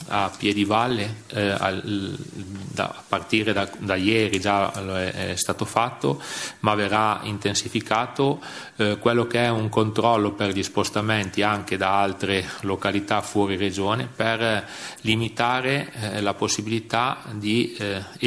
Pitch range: 100-115 Hz